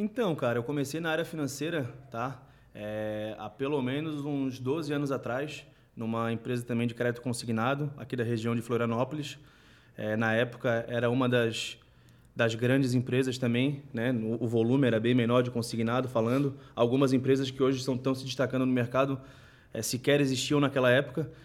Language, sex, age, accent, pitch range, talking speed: Portuguese, male, 20-39, Brazilian, 120-150 Hz, 175 wpm